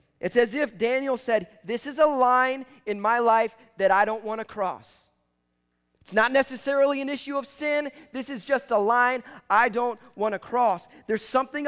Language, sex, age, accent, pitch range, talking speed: English, male, 30-49, American, 195-260 Hz, 190 wpm